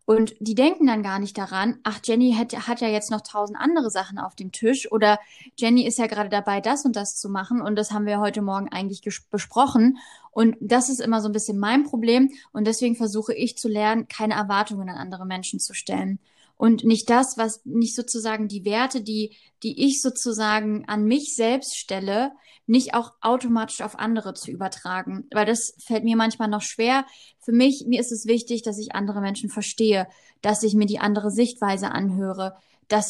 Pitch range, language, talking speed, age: 210-240 Hz, German, 200 wpm, 20-39